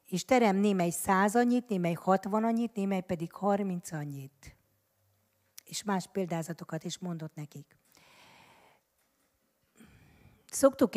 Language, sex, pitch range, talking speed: Hungarian, female, 170-210 Hz, 105 wpm